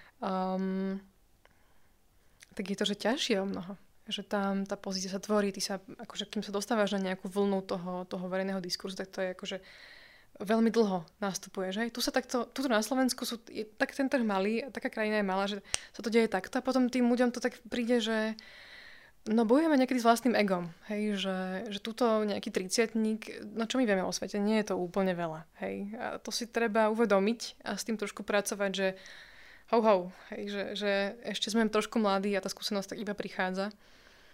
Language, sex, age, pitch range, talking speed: Slovak, female, 20-39, 195-230 Hz, 200 wpm